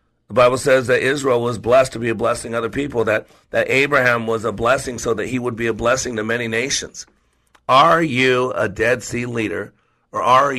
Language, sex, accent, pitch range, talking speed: English, male, American, 115-130 Hz, 215 wpm